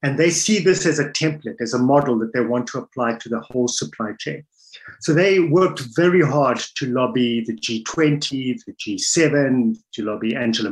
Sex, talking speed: male, 190 wpm